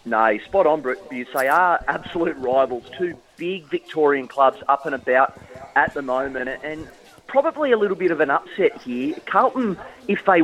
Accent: Australian